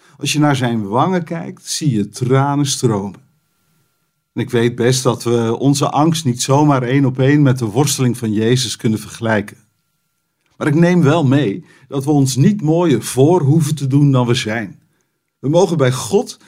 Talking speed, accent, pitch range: 185 wpm, Dutch, 120-155 Hz